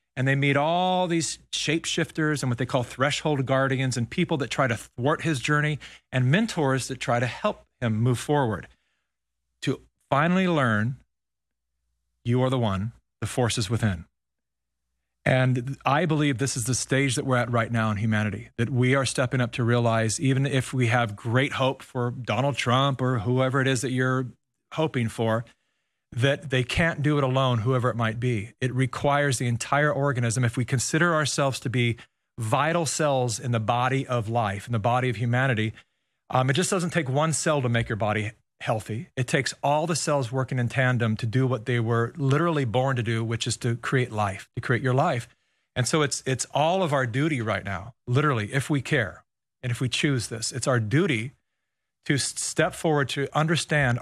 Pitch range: 120-140 Hz